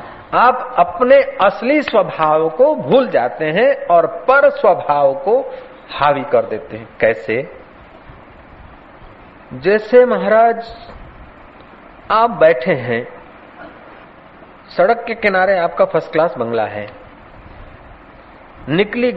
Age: 50-69